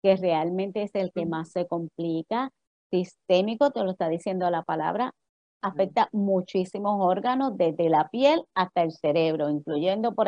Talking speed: 150 wpm